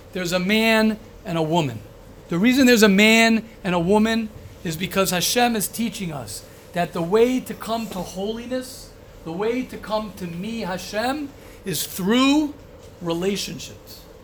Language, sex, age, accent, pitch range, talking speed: English, male, 50-69, American, 180-255 Hz, 155 wpm